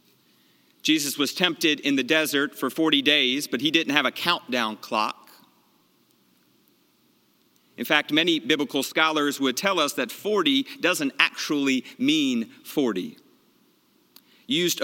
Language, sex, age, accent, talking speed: English, male, 40-59, American, 125 wpm